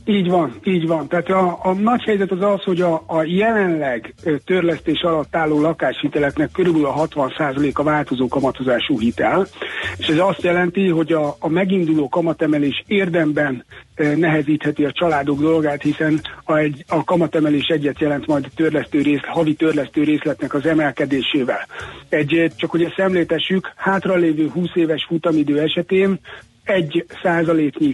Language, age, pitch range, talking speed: Hungarian, 60-79, 150-175 Hz, 145 wpm